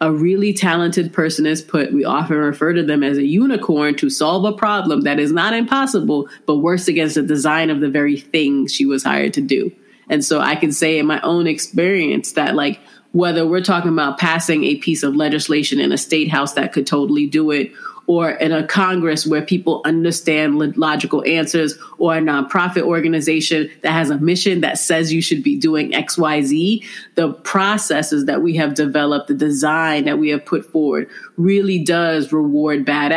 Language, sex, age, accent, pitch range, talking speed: English, female, 30-49, American, 150-175 Hz, 190 wpm